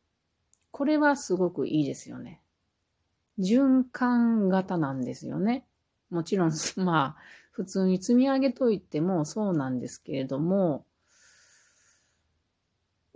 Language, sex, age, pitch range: Japanese, female, 40-59, 135-190 Hz